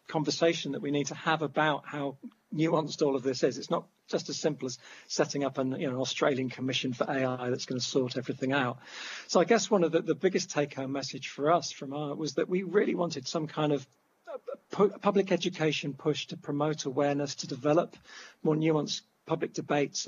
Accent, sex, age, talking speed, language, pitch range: British, male, 40-59, 210 wpm, English, 135-165 Hz